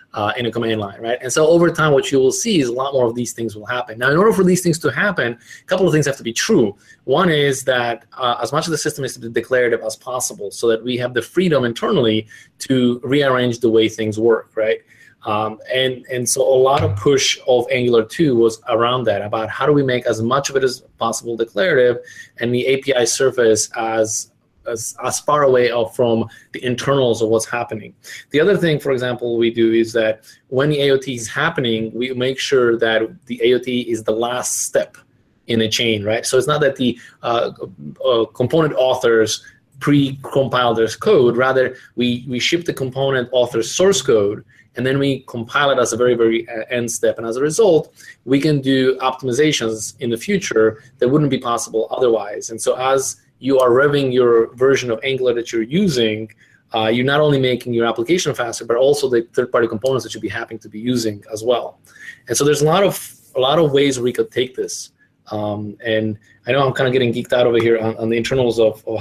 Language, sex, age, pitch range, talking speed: English, male, 20-39, 115-135 Hz, 220 wpm